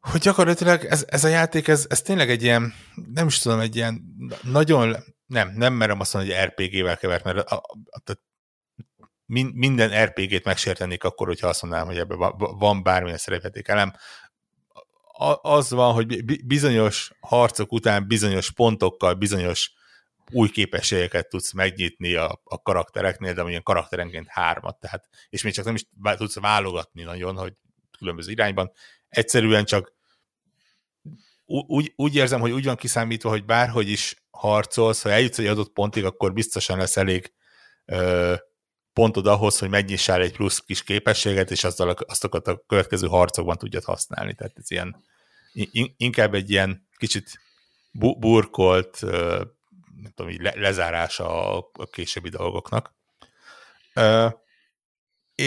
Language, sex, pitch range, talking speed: Hungarian, male, 95-120 Hz, 145 wpm